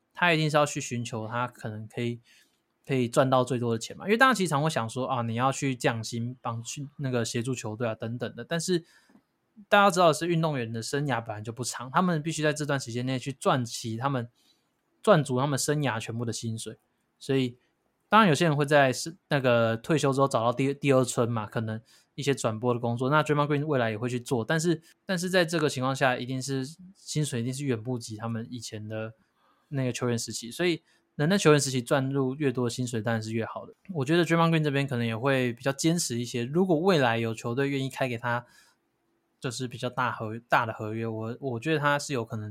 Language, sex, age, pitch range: Chinese, male, 20-39, 120-150 Hz